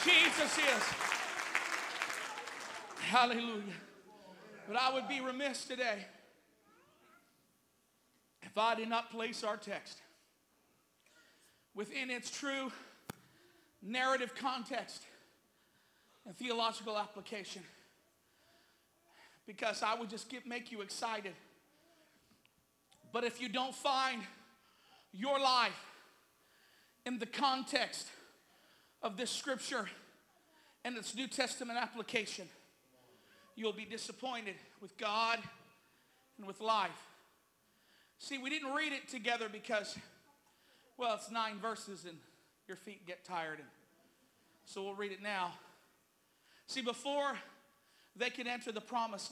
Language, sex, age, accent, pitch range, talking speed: English, male, 50-69, American, 200-250 Hz, 105 wpm